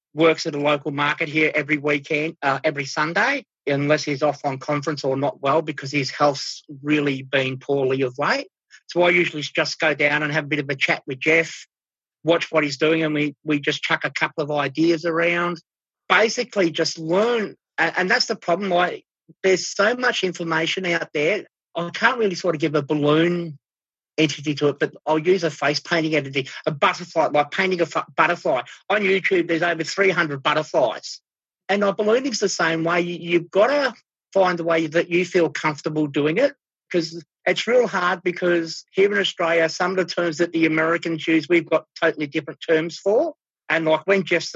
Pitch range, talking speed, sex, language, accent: 150-180 Hz, 200 wpm, male, English, Australian